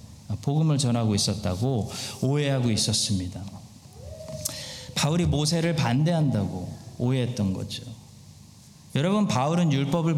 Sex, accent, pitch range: male, native, 110-170 Hz